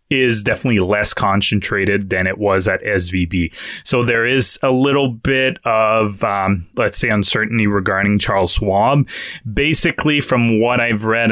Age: 20-39